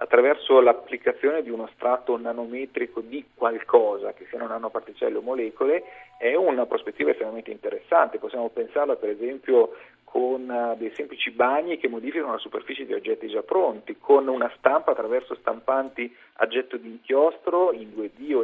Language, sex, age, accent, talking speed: Italian, male, 40-59, native, 155 wpm